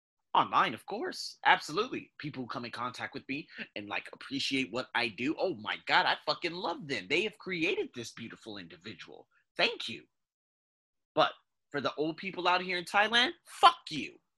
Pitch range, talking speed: 150-230 Hz, 180 wpm